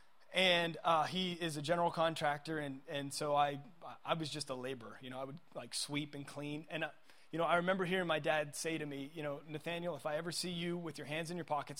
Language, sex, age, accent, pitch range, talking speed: English, male, 20-39, American, 145-175 Hz, 255 wpm